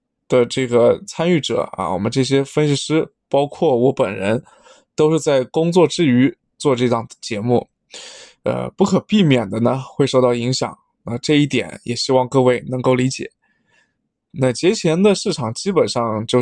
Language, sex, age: Chinese, male, 20-39